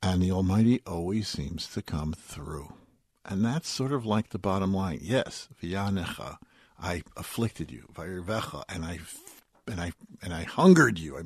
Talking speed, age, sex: 155 wpm, 50-69, male